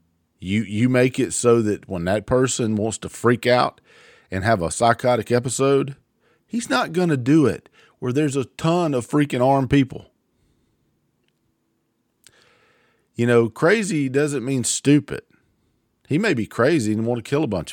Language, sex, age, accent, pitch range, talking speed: English, male, 50-69, American, 100-130 Hz, 165 wpm